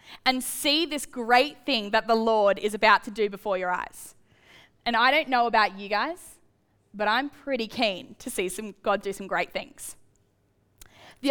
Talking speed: 185 wpm